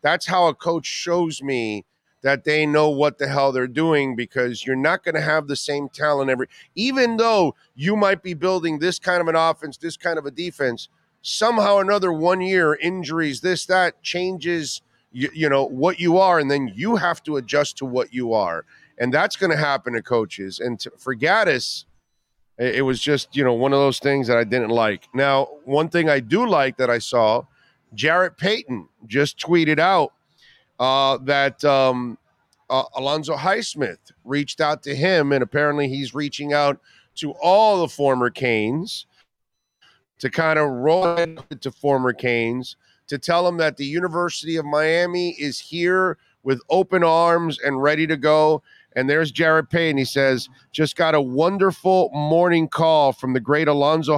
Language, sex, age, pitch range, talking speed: English, male, 40-59, 135-170 Hz, 180 wpm